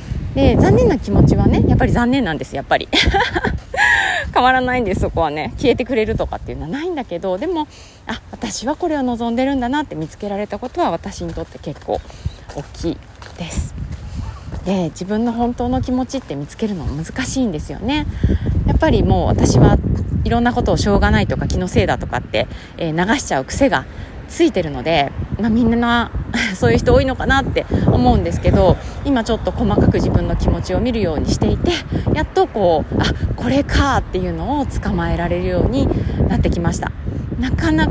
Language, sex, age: Japanese, female, 30-49